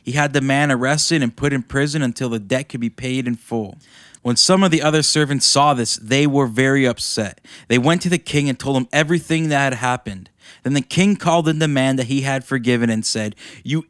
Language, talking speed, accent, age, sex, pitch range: English, 240 wpm, American, 20-39, male, 120-155 Hz